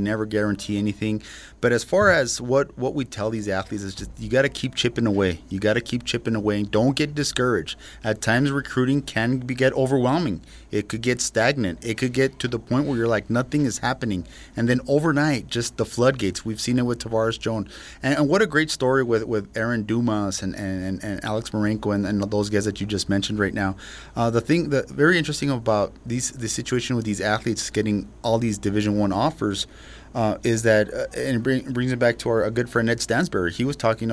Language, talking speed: English, 230 wpm